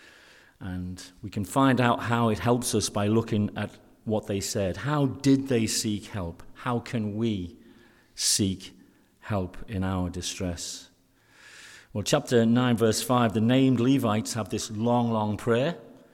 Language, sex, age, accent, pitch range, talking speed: English, male, 50-69, British, 105-130 Hz, 155 wpm